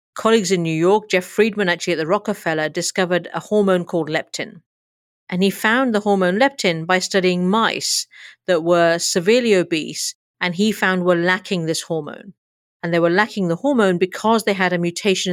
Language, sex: English, female